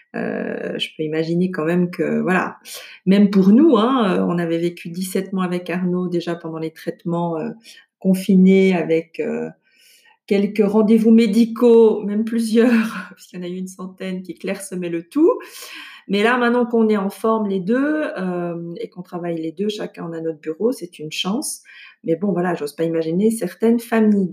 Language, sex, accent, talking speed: French, female, French, 185 wpm